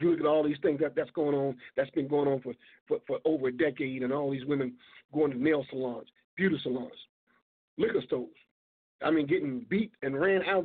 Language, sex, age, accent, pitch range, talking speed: English, male, 50-69, American, 145-245 Hz, 225 wpm